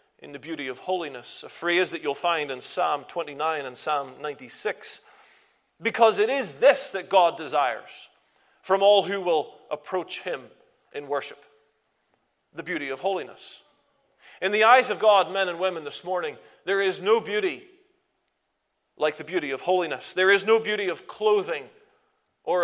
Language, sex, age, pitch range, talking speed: English, male, 40-59, 165-245 Hz, 160 wpm